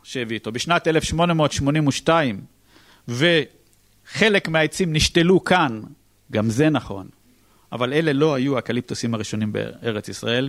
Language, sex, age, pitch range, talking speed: Hebrew, male, 50-69, 115-170 Hz, 110 wpm